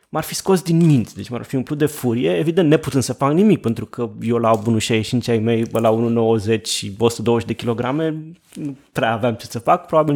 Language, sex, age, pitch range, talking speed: Romanian, male, 20-39, 115-175 Hz, 220 wpm